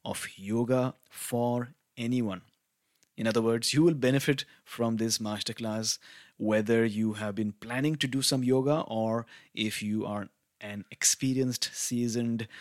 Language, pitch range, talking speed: English, 110-130 Hz, 140 wpm